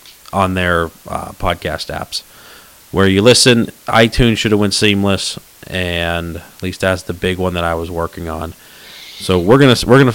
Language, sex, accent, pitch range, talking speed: English, male, American, 95-115 Hz, 175 wpm